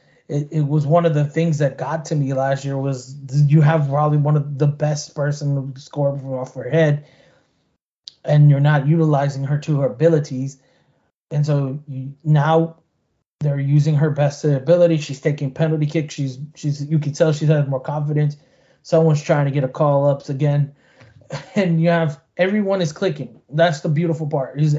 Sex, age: male, 20-39